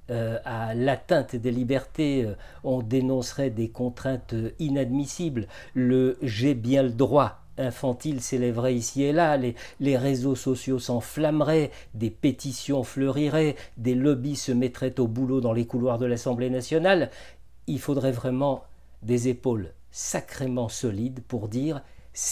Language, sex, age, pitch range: French, male, 50-69, 110-135 Hz